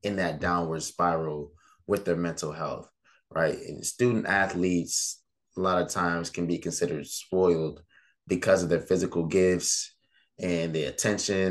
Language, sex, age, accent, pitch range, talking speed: English, male, 20-39, American, 80-95 Hz, 145 wpm